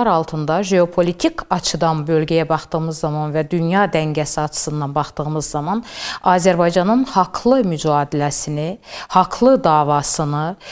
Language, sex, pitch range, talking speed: Turkish, female, 165-200 Hz, 95 wpm